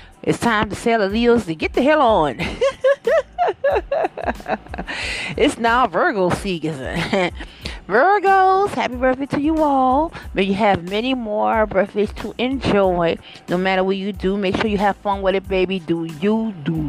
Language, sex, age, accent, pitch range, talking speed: English, female, 30-49, American, 185-240 Hz, 155 wpm